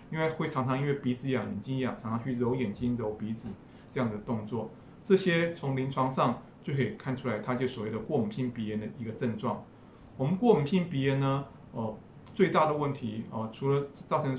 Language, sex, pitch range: Chinese, male, 120-140 Hz